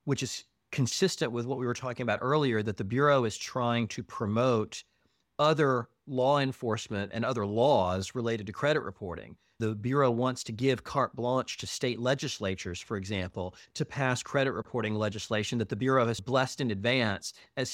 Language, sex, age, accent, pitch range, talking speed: English, male, 40-59, American, 110-135 Hz, 175 wpm